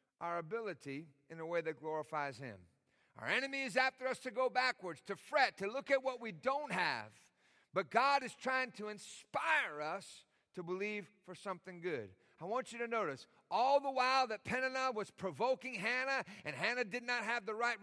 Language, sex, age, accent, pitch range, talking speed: English, male, 50-69, American, 155-255 Hz, 190 wpm